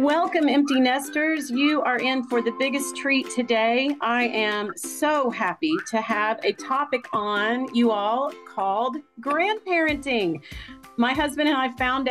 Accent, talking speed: American, 145 wpm